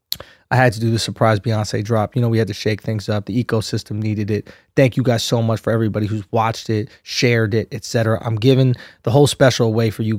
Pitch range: 110-120 Hz